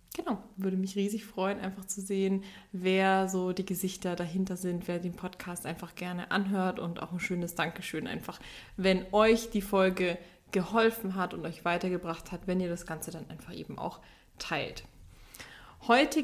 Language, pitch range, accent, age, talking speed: German, 180-205 Hz, German, 20-39, 170 wpm